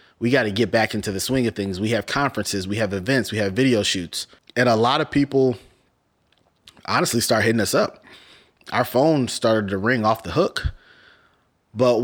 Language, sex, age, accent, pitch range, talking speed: English, male, 20-39, American, 105-130 Hz, 195 wpm